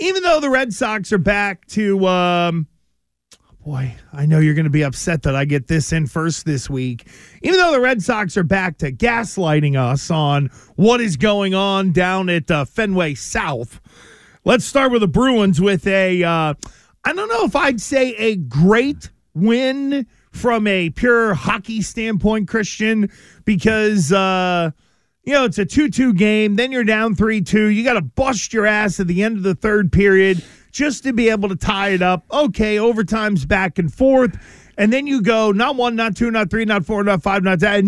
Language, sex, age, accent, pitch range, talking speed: English, male, 40-59, American, 185-240 Hz, 190 wpm